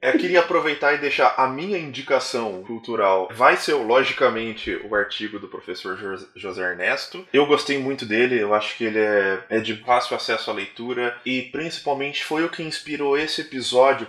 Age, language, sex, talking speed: 20-39, Portuguese, male, 175 wpm